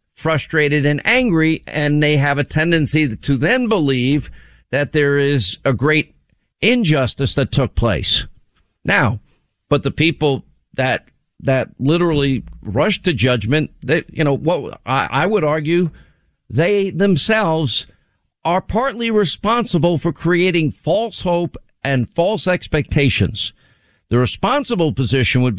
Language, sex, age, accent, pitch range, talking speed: English, male, 50-69, American, 125-165 Hz, 125 wpm